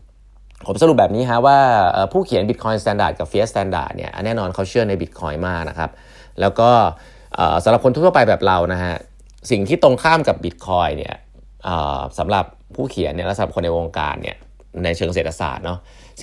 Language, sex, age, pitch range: Thai, male, 30-49, 90-115 Hz